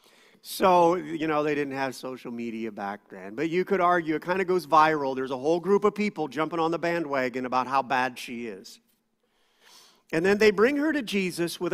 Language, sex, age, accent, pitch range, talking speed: English, male, 50-69, American, 135-205 Hz, 215 wpm